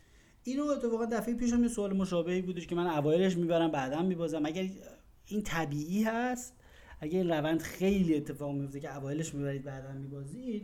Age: 30-49